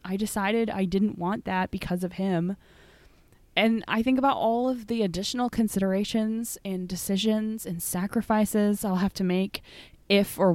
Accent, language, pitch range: American, English, 195-250 Hz